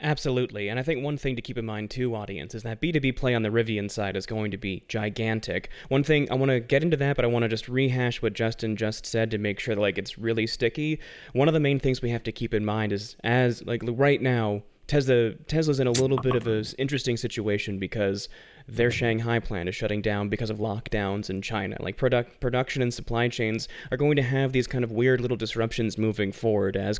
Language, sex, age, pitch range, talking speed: English, male, 20-39, 105-125 Hz, 240 wpm